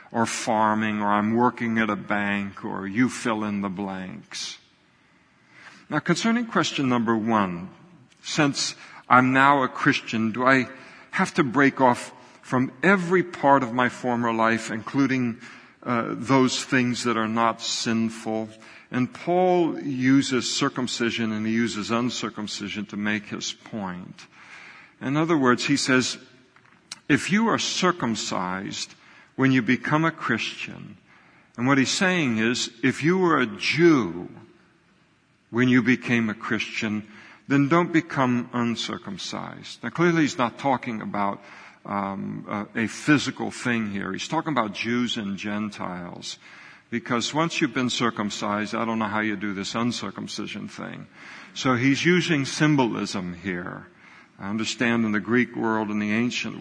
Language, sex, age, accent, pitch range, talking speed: English, male, 60-79, American, 105-135 Hz, 145 wpm